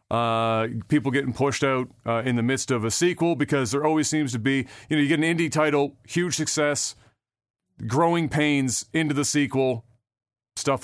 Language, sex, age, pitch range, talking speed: English, male, 40-59, 115-170 Hz, 185 wpm